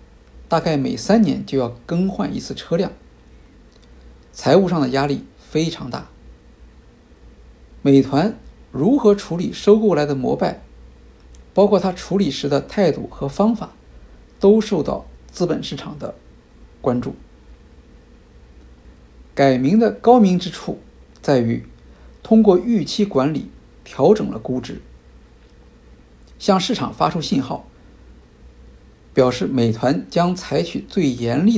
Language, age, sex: Chinese, 50-69, male